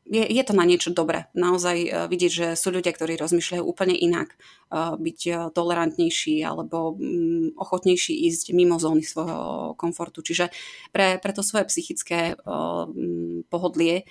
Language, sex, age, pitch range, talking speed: Slovak, female, 20-39, 165-200 Hz, 130 wpm